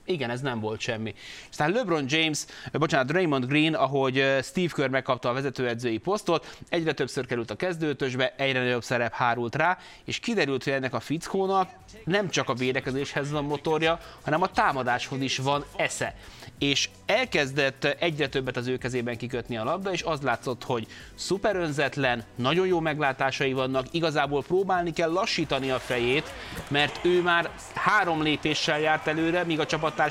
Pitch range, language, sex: 130-170 Hz, Hungarian, male